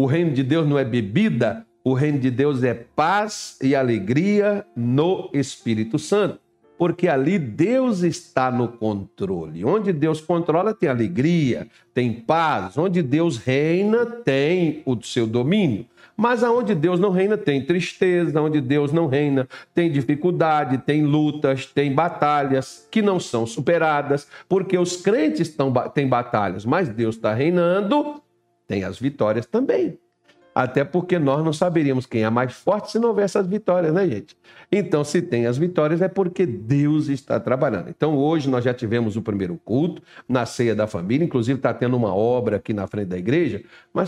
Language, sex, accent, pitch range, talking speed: Portuguese, male, Brazilian, 120-175 Hz, 165 wpm